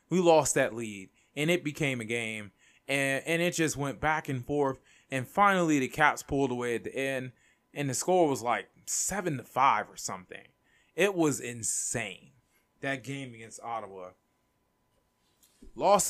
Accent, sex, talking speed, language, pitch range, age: American, male, 165 wpm, English, 110-155 Hz, 20-39